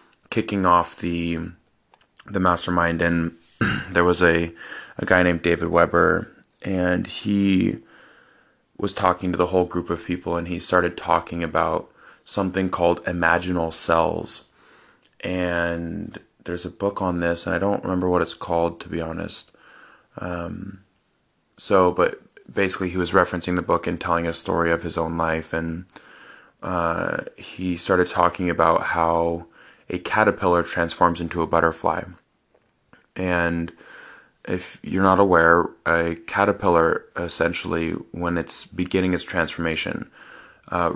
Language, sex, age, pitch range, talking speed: English, male, 20-39, 85-90 Hz, 135 wpm